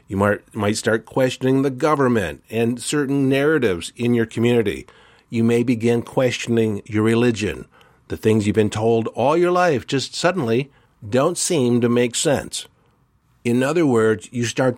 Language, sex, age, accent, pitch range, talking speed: English, male, 50-69, American, 115-140 Hz, 160 wpm